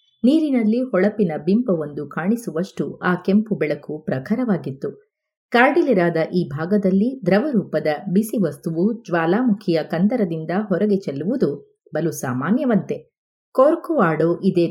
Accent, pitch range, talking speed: native, 160-230 Hz, 95 wpm